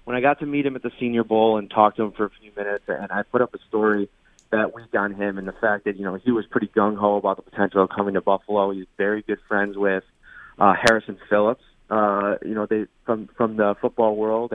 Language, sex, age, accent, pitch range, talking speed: English, male, 30-49, American, 105-125 Hz, 255 wpm